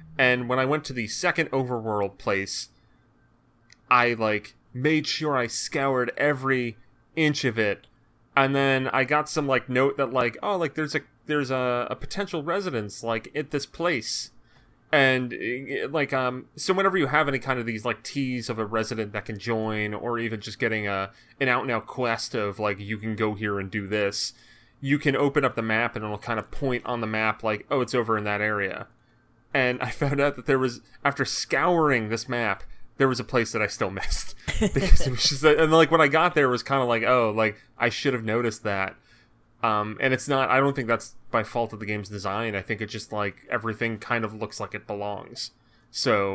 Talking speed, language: 215 wpm, English